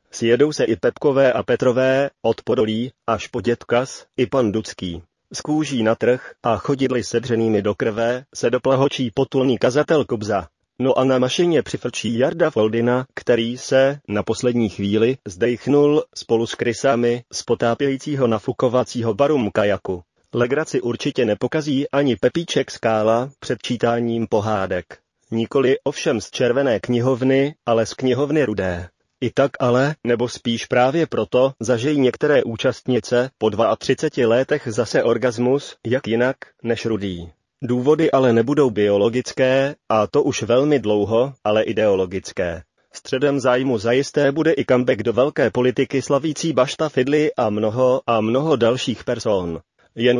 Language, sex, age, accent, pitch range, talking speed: Czech, male, 30-49, native, 115-135 Hz, 135 wpm